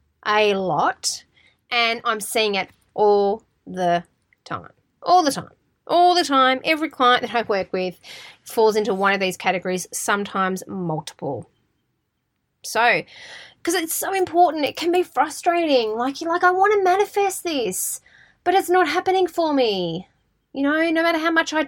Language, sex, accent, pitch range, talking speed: English, female, Australian, 200-280 Hz, 165 wpm